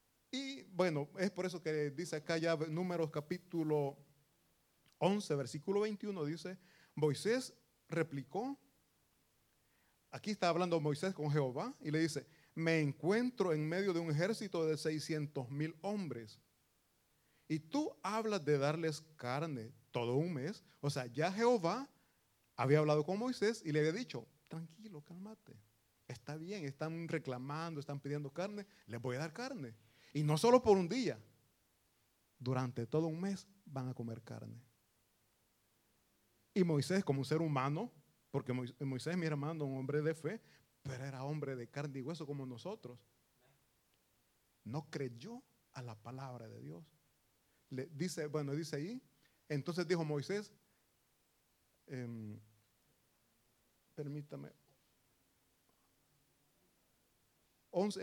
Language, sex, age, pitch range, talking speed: Italian, male, 30-49, 135-180 Hz, 130 wpm